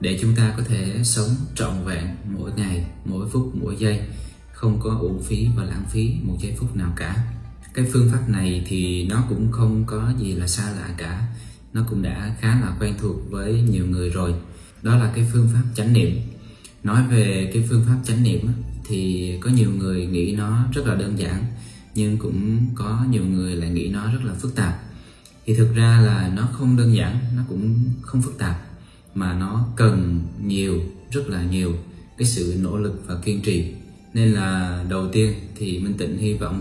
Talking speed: 200 wpm